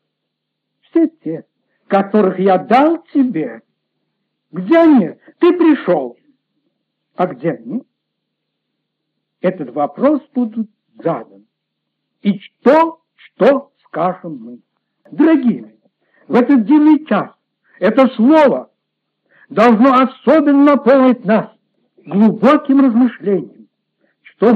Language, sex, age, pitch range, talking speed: Russian, male, 60-79, 205-275 Hz, 85 wpm